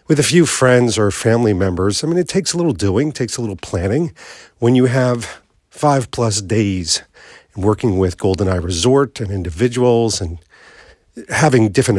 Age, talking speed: 50-69, 165 wpm